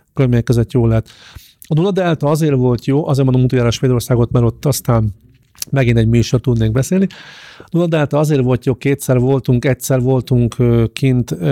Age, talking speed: 30-49, 170 wpm